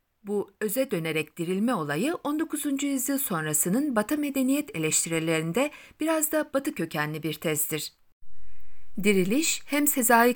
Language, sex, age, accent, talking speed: Turkish, female, 60-79, native, 115 wpm